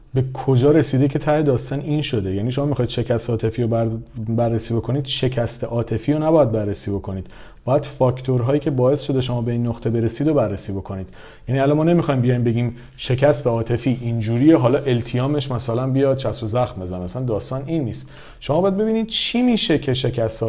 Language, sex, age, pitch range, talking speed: Persian, male, 40-59, 115-145 Hz, 180 wpm